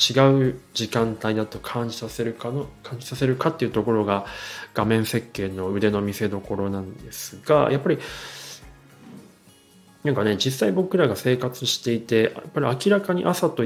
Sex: male